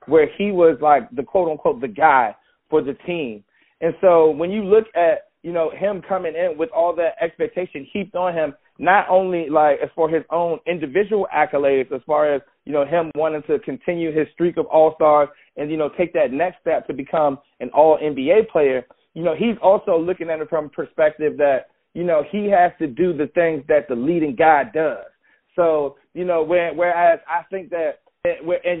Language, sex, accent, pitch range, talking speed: English, male, American, 155-190 Hz, 200 wpm